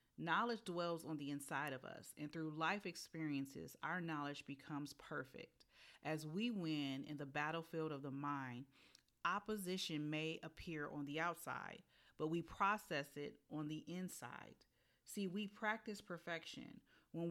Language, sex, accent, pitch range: English, female, American, 145-180 Hz